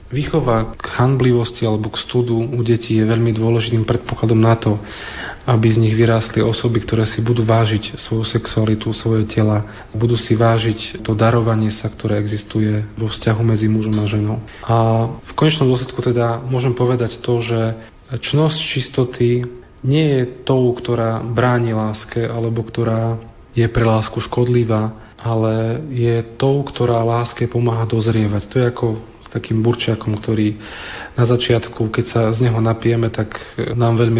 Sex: male